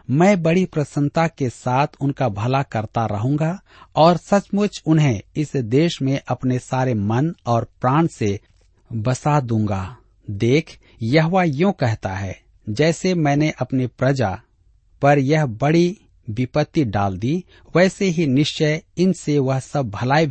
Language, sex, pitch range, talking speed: Hindi, male, 110-155 Hz, 125 wpm